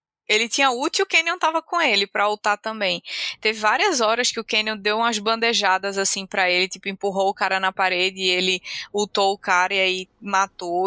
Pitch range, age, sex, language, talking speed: 190-250 Hz, 20-39, female, Portuguese, 210 wpm